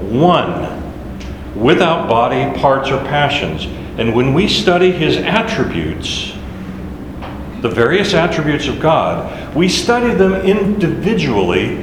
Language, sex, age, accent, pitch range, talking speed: English, male, 60-79, American, 145-190 Hz, 105 wpm